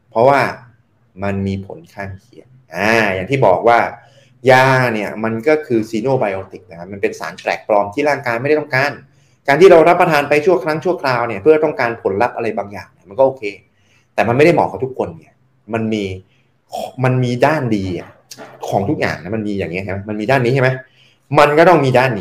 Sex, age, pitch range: male, 20-39, 100-150 Hz